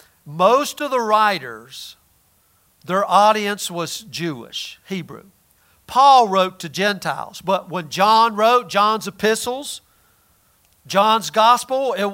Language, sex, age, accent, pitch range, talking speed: English, male, 50-69, American, 175-225 Hz, 105 wpm